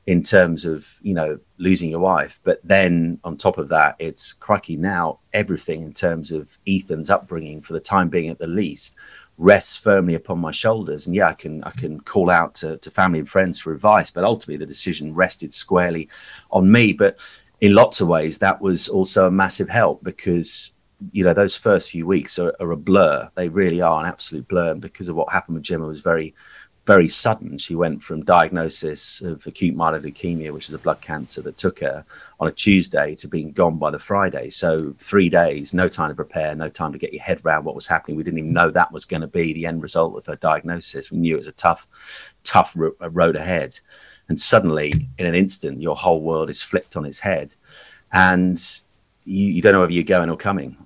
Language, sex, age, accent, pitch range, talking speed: English, male, 30-49, British, 80-95 Hz, 220 wpm